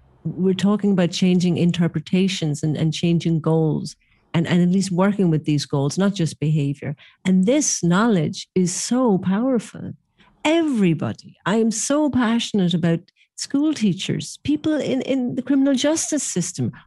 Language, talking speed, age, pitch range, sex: English, 145 wpm, 50-69, 175-230 Hz, female